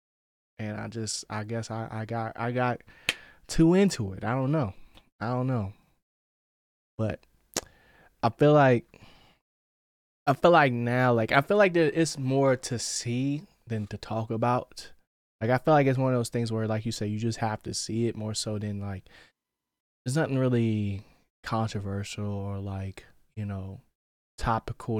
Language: English